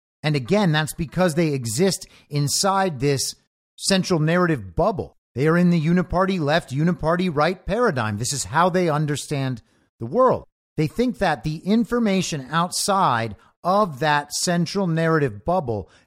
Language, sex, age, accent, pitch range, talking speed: English, male, 50-69, American, 145-200 Hz, 140 wpm